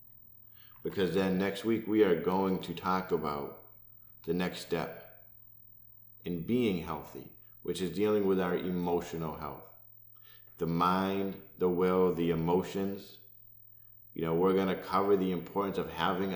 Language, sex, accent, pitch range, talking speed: English, male, American, 85-120 Hz, 145 wpm